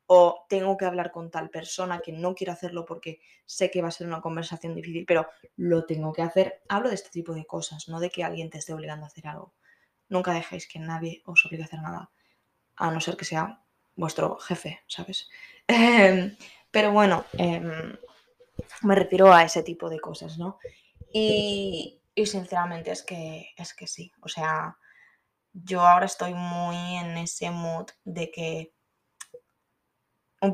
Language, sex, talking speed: Spanish, female, 175 wpm